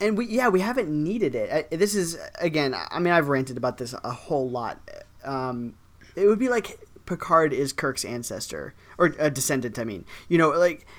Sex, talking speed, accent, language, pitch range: male, 205 wpm, American, English, 130-165 Hz